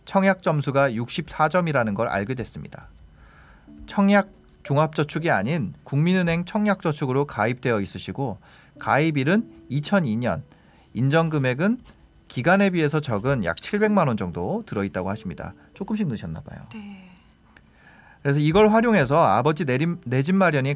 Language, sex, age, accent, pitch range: Korean, male, 40-59, native, 120-185 Hz